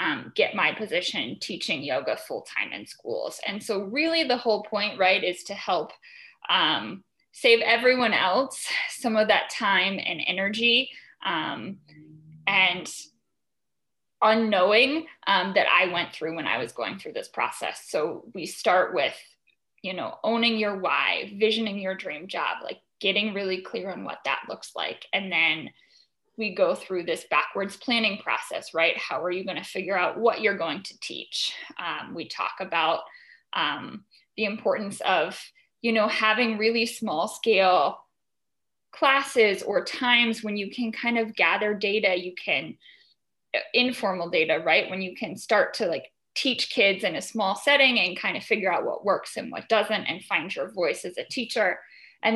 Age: 10-29